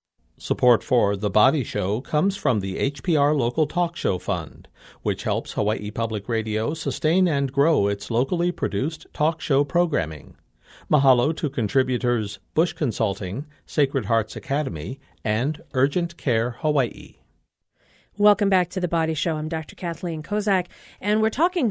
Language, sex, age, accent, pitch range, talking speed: English, male, 50-69, American, 160-210 Hz, 145 wpm